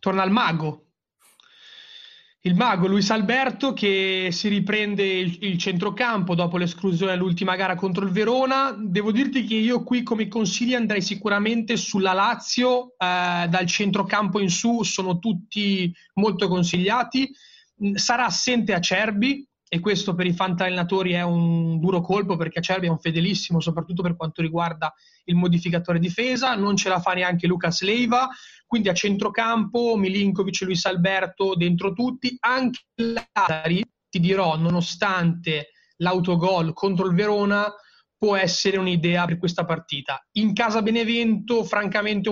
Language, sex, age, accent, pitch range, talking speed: Italian, male, 30-49, native, 175-215 Hz, 140 wpm